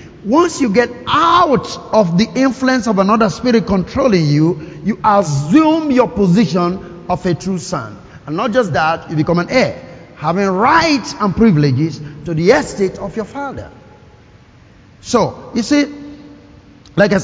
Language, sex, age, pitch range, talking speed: English, male, 50-69, 185-250 Hz, 150 wpm